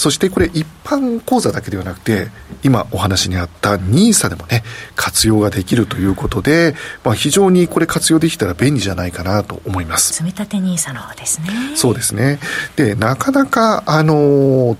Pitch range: 105-170 Hz